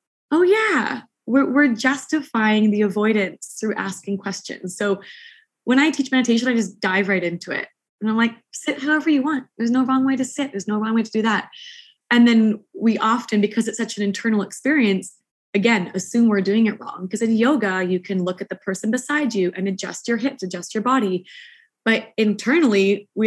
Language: English